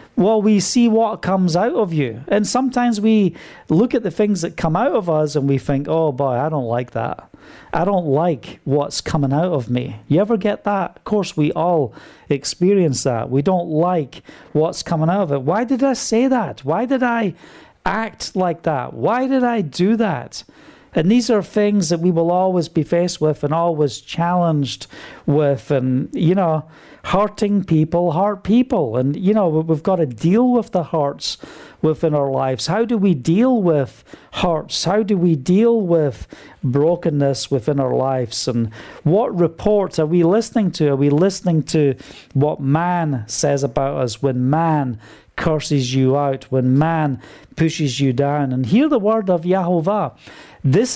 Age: 40-59